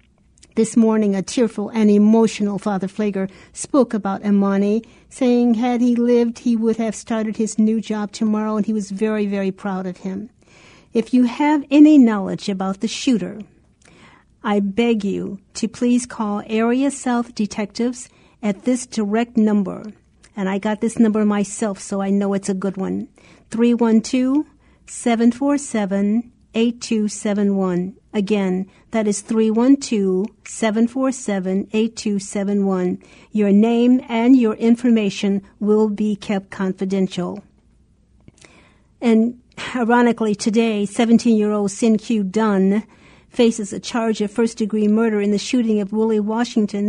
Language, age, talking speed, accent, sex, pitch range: English, 50-69, 125 wpm, American, female, 200-235 Hz